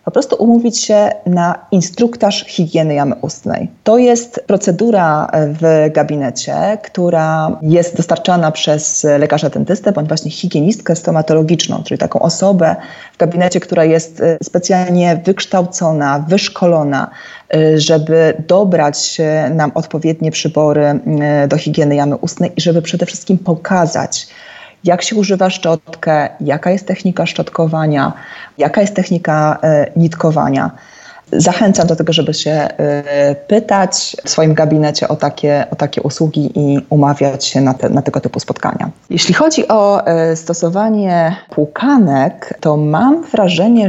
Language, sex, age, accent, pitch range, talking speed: Polish, female, 20-39, native, 155-185 Hz, 120 wpm